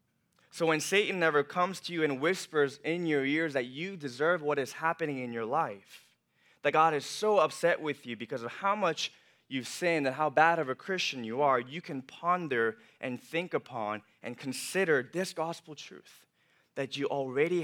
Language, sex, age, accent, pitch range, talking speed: English, male, 20-39, American, 125-155 Hz, 190 wpm